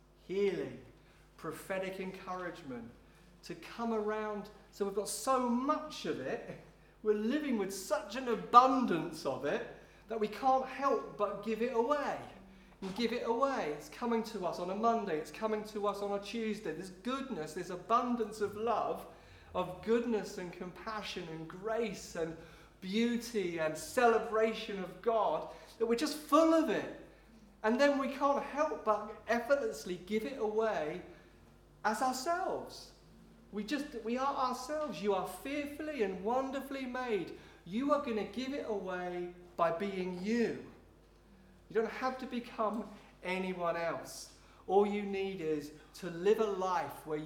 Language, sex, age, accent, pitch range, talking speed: English, male, 40-59, British, 185-240 Hz, 150 wpm